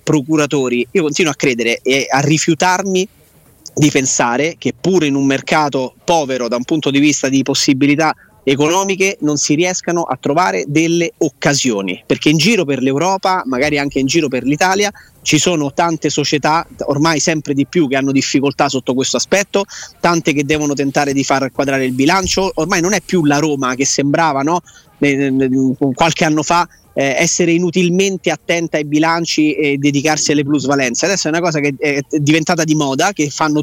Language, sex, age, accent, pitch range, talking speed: Italian, male, 30-49, native, 140-170 Hz, 170 wpm